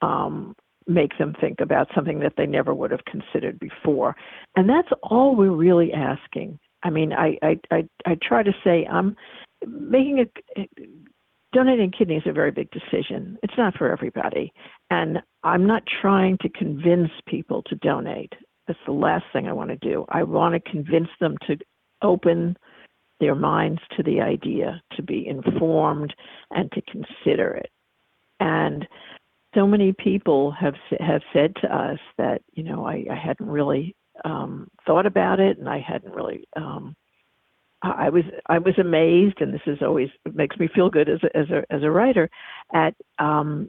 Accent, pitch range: American, 160-205 Hz